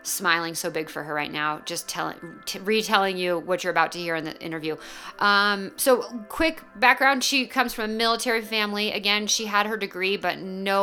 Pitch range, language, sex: 170-235 Hz, English, female